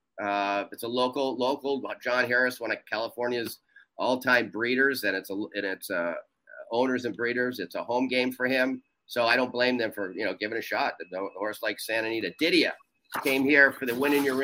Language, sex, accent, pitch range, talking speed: English, male, American, 115-140 Hz, 210 wpm